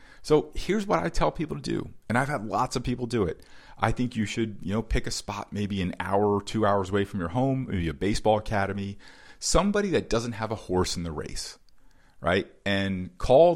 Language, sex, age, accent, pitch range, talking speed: English, male, 40-59, American, 90-125 Hz, 225 wpm